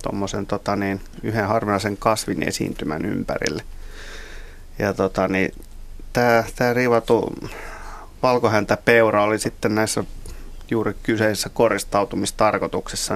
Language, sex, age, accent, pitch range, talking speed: Finnish, male, 30-49, native, 100-115 Hz, 90 wpm